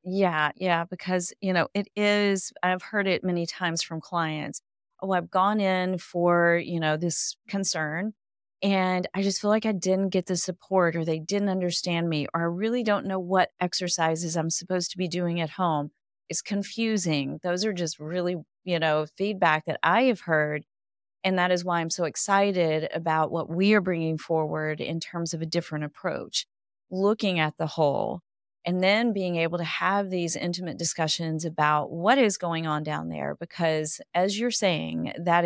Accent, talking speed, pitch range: American, 185 wpm, 160-195 Hz